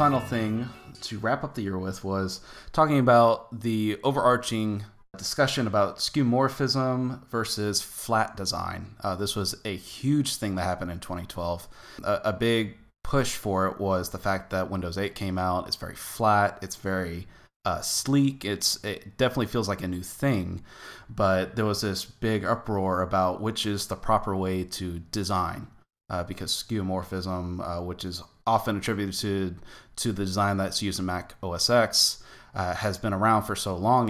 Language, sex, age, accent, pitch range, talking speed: English, male, 20-39, American, 95-115 Hz, 170 wpm